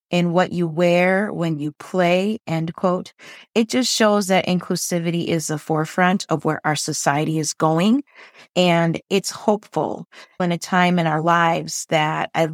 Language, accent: English, American